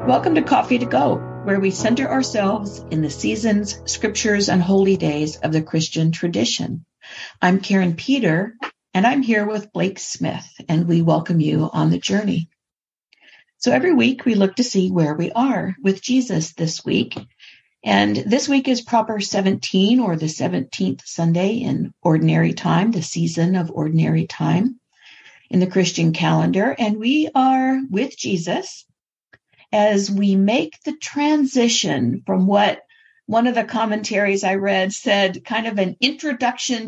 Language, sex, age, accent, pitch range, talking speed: English, female, 50-69, American, 170-235 Hz, 155 wpm